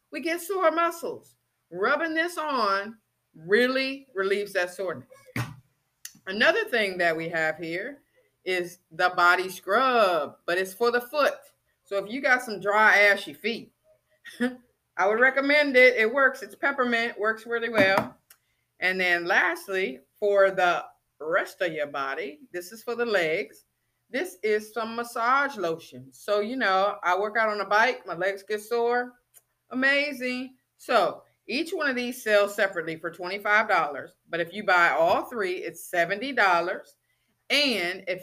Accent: American